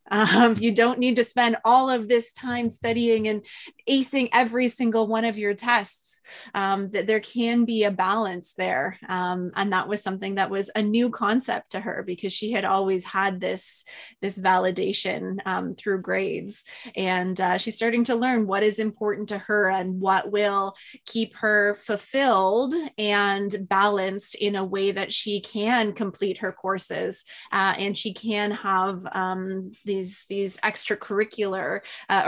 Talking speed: 165 wpm